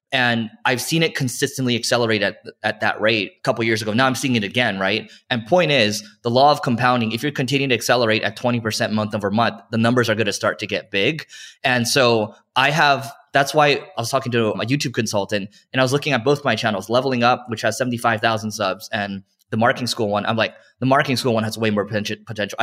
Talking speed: 235 wpm